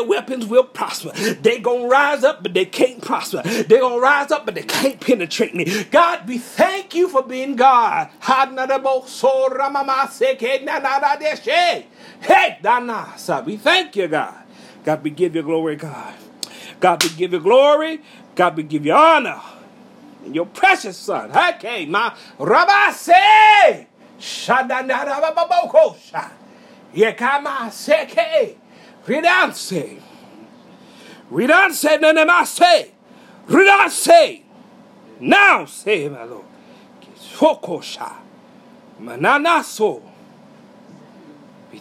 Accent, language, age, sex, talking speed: American, English, 40-59, male, 100 wpm